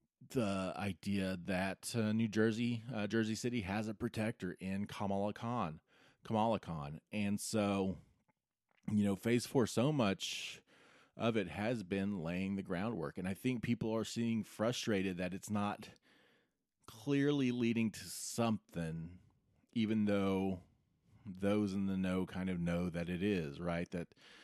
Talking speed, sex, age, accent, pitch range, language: 145 wpm, male, 30-49, American, 90-110 Hz, English